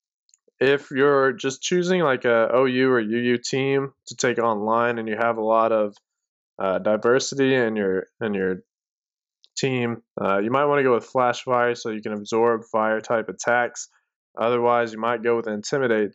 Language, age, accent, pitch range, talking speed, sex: English, 20-39, American, 110-125 Hz, 180 wpm, male